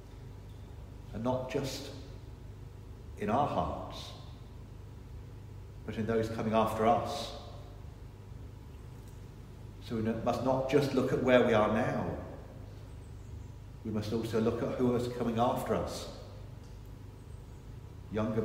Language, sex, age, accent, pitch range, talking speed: English, male, 40-59, British, 105-130 Hz, 110 wpm